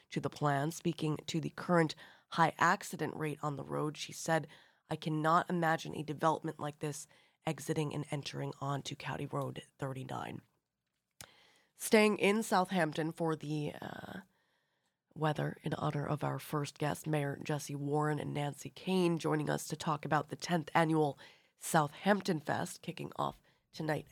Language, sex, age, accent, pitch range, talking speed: English, female, 20-39, American, 145-175 Hz, 150 wpm